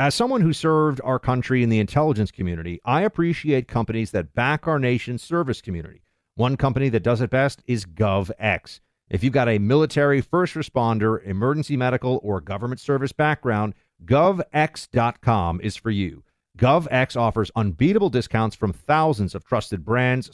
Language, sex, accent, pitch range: English, male, American, 110-155 Hz